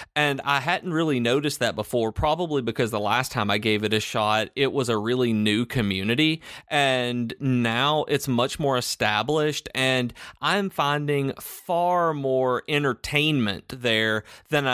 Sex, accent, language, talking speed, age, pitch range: male, American, English, 150 wpm, 30-49, 110-135 Hz